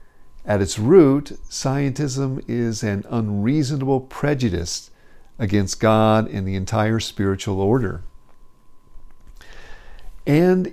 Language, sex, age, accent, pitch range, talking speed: English, male, 50-69, American, 100-130 Hz, 90 wpm